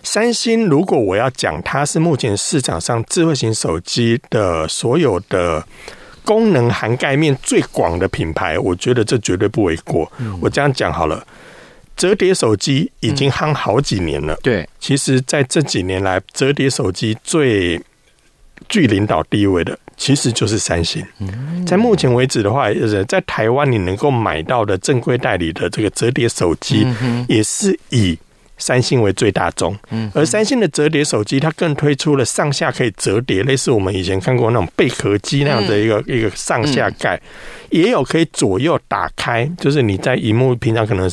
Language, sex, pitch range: Chinese, male, 110-150 Hz